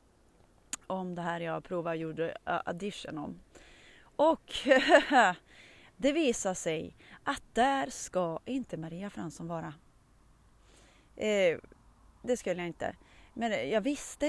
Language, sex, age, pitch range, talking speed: Swedish, female, 30-49, 170-225 Hz, 115 wpm